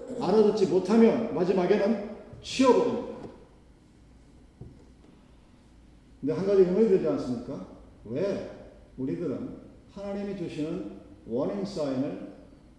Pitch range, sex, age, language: 195-250 Hz, male, 40-59, Korean